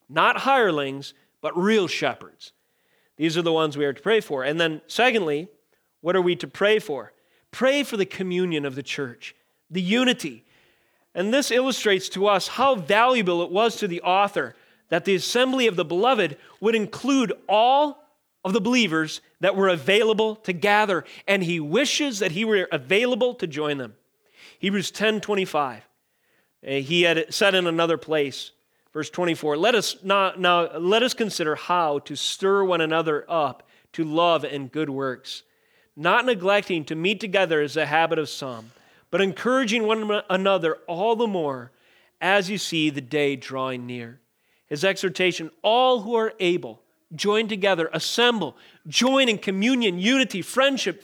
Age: 40-59